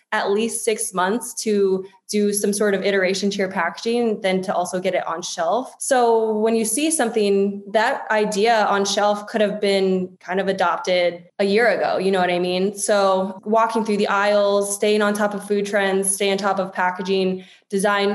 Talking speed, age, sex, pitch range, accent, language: 200 wpm, 20-39, female, 190-215 Hz, American, English